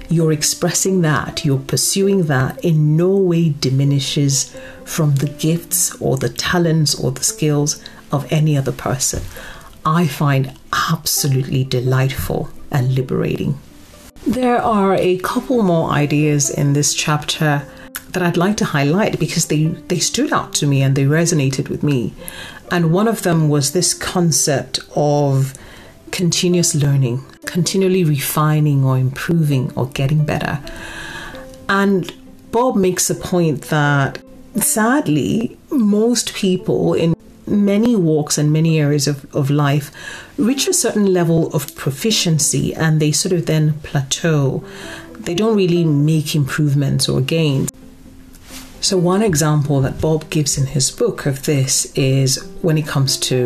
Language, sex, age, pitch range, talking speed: English, female, 40-59, 140-180 Hz, 140 wpm